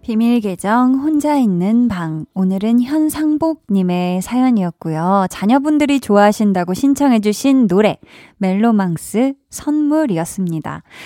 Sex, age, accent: female, 20-39, native